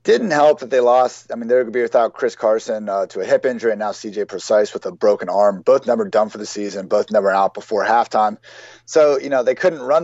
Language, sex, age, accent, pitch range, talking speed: English, male, 30-49, American, 115-155 Hz, 270 wpm